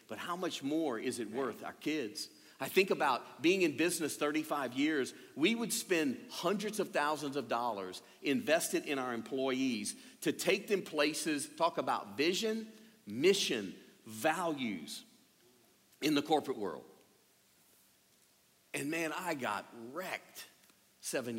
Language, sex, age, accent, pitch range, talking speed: English, male, 50-69, American, 140-230 Hz, 135 wpm